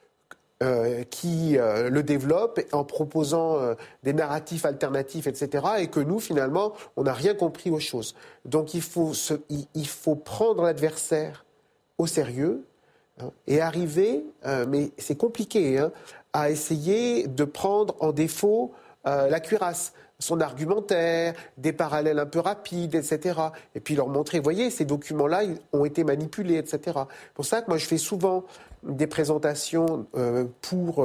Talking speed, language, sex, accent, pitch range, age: 155 wpm, French, male, French, 145-180 Hz, 40-59